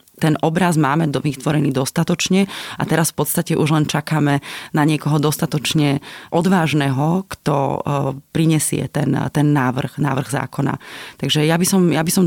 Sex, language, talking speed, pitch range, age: female, Slovak, 135 wpm, 145-160 Hz, 30-49